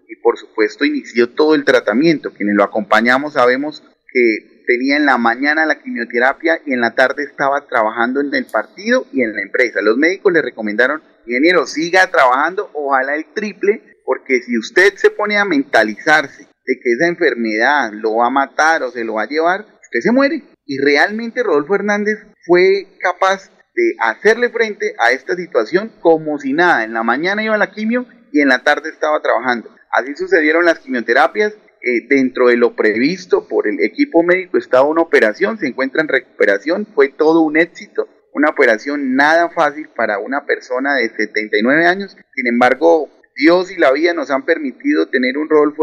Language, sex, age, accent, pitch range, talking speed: Spanish, male, 30-49, Venezuelan, 135-215 Hz, 180 wpm